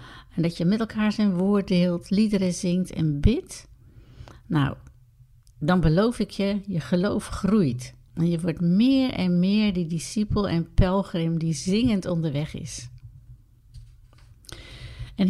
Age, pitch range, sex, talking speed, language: 60-79, 125-185 Hz, female, 135 wpm, Dutch